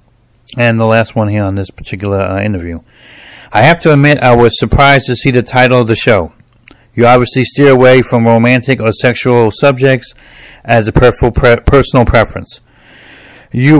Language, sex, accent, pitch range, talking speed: English, male, American, 110-130 Hz, 165 wpm